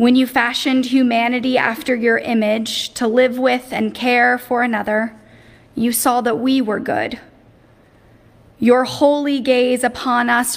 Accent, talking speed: American, 140 wpm